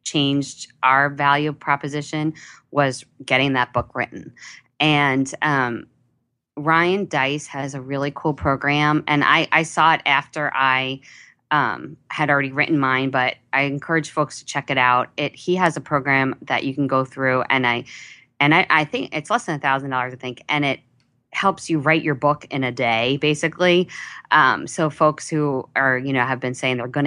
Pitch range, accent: 130-155 Hz, American